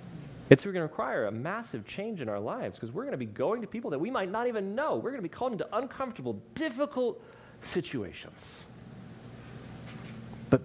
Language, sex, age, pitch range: English, male, 30-49, 105-125 Hz